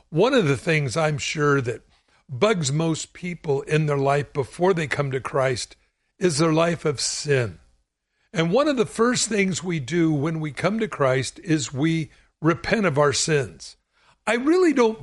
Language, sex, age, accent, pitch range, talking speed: English, male, 60-79, American, 140-190 Hz, 180 wpm